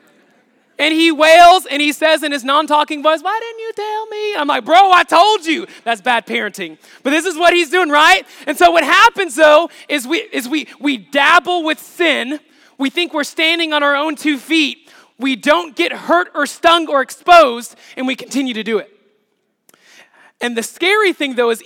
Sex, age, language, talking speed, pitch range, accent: male, 20-39, English, 200 wpm, 210-315 Hz, American